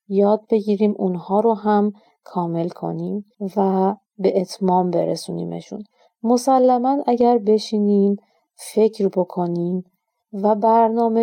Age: 30-49